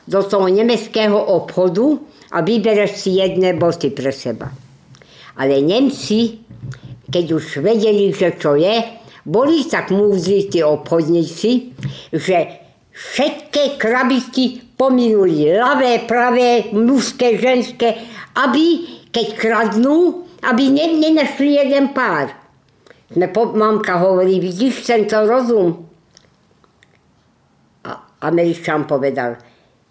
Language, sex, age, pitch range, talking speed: Slovak, female, 50-69, 170-240 Hz, 95 wpm